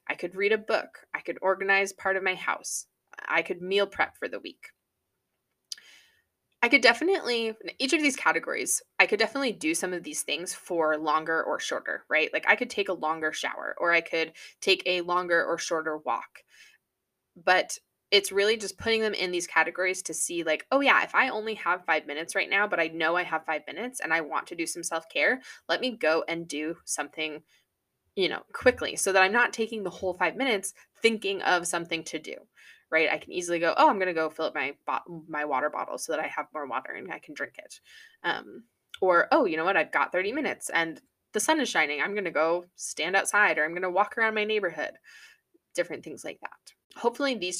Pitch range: 160-220 Hz